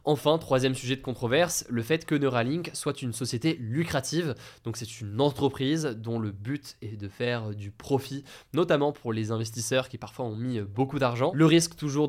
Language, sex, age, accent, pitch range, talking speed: French, male, 20-39, French, 115-145 Hz, 190 wpm